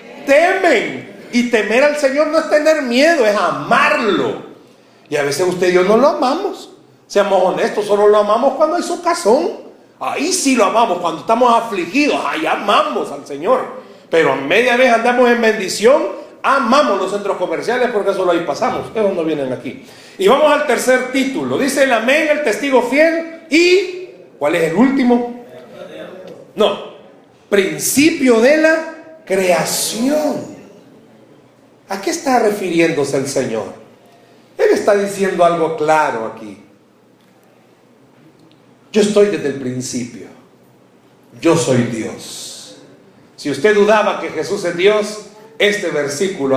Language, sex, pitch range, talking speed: Spanish, male, 170-275 Hz, 140 wpm